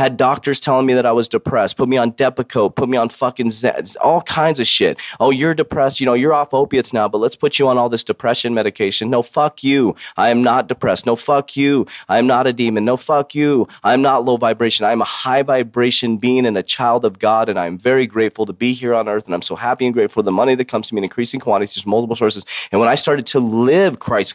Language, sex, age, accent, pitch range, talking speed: English, male, 30-49, American, 115-140 Hz, 255 wpm